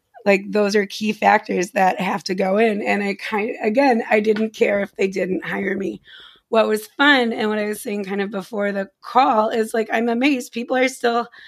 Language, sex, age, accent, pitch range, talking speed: English, female, 30-49, American, 200-235 Hz, 220 wpm